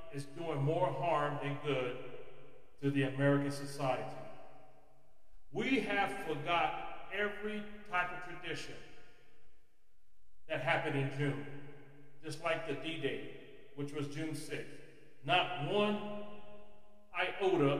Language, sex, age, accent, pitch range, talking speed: English, male, 40-59, American, 135-165 Hz, 110 wpm